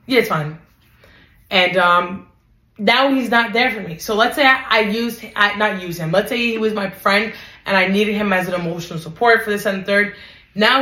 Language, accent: English, American